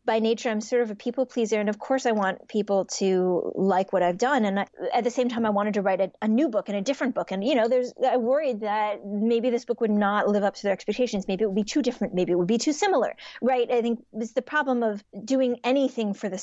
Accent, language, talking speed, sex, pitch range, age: American, English, 280 wpm, female, 195-245 Hz, 20-39